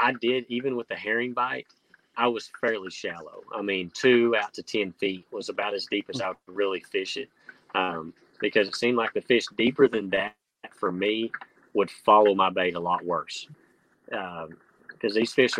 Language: English